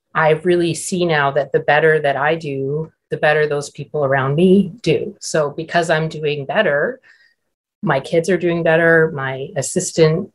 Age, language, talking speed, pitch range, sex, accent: 30-49, English, 170 wpm, 140-165 Hz, female, American